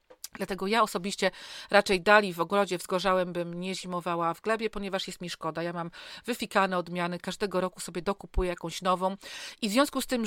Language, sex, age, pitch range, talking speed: Polish, female, 40-59, 175-215 Hz, 185 wpm